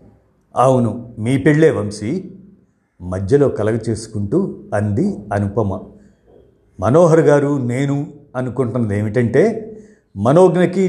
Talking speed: 85 wpm